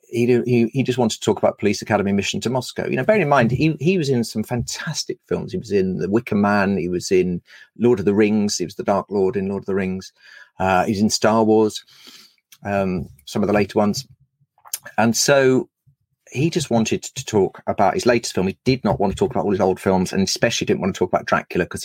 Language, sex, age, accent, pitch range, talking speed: English, male, 40-59, British, 105-140 Hz, 245 wpm